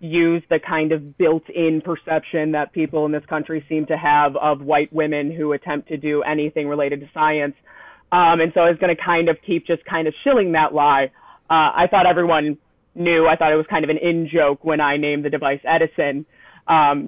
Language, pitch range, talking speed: English, 150-170 Hz, 220 wpm